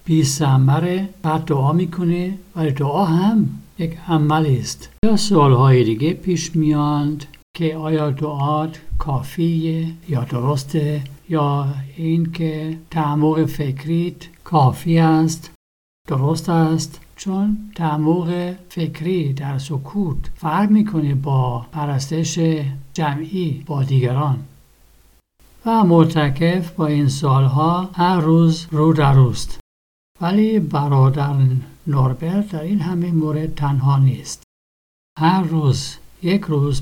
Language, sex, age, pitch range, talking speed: Persian, male, 60-79, 140-170 Hz, 105 wpm